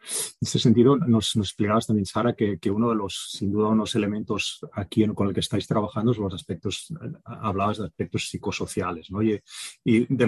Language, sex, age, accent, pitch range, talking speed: English, male, 30-49, Spanish, 95-115 Hz, 210 wpm